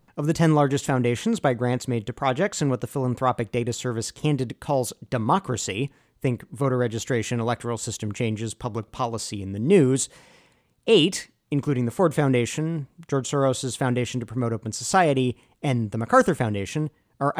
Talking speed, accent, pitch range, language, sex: 150 wpm, American, 120-155 Hz, English, male